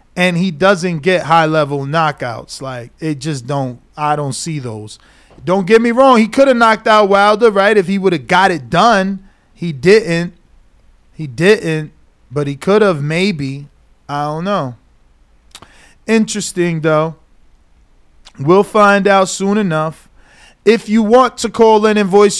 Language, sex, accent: English, male, American